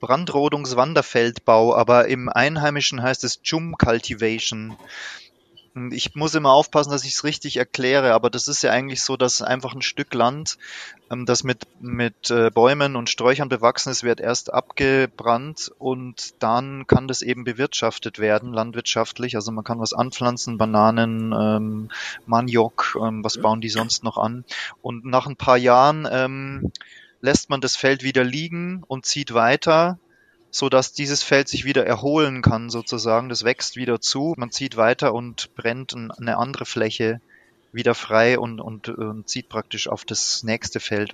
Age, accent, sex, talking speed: 30-49, German, male, 160 wpm